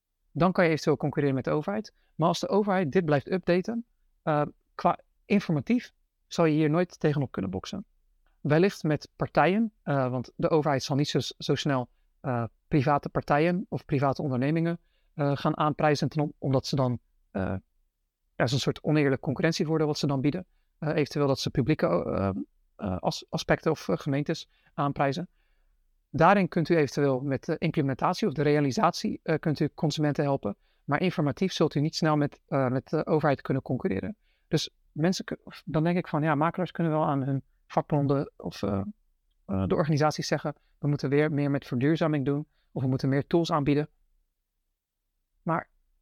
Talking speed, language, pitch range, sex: 170 wpm, Dutch, 140-170 Hz, male